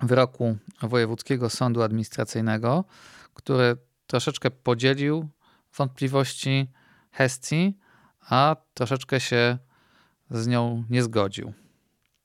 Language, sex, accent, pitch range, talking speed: Polish, male, native, 115-135 Hz, 80 wpm